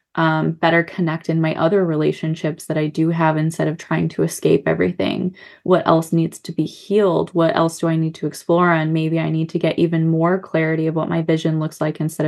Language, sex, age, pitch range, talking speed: English, female, 20-39, 155-175 Hz, 225 wpm